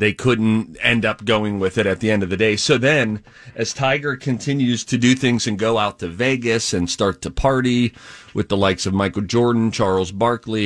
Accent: American